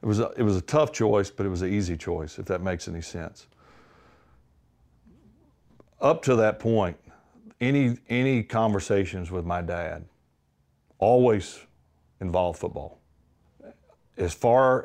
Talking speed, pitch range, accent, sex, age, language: 135 wpm, 85-105 Hz, American, male, 40-59, English